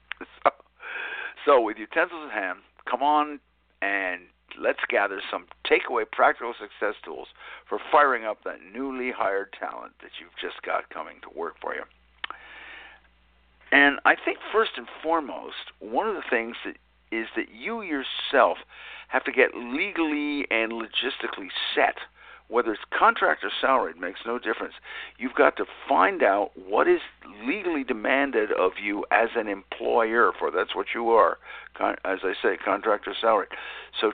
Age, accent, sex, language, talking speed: 50-69, American, male, English, 155 wpm